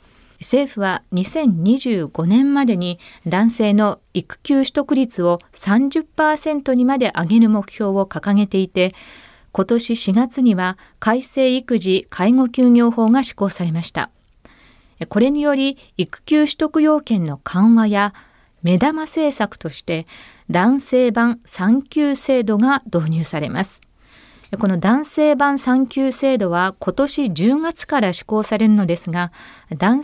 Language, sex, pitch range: Japanese, female, 185-260 Hz